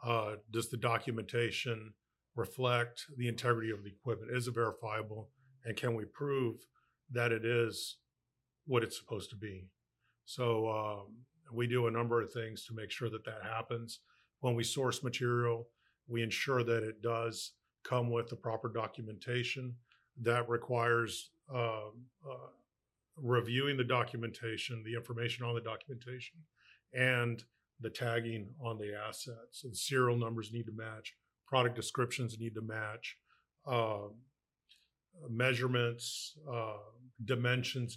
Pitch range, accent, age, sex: 110-125 Hz, American, 50-69, male